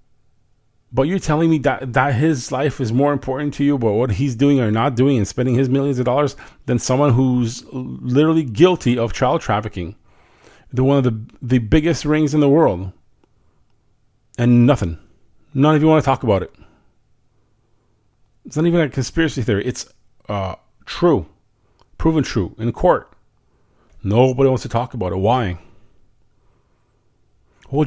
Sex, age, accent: male, 40-59, American